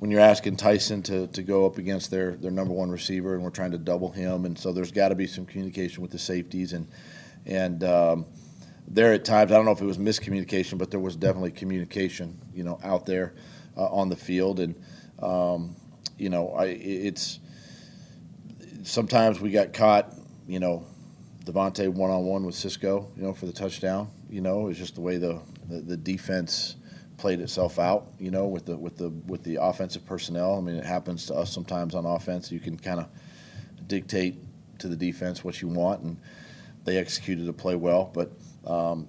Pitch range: 90-95 Hz